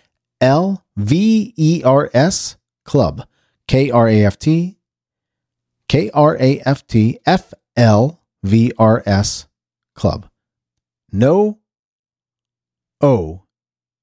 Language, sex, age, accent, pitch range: English, male, 40-59, American, 95-145 Hz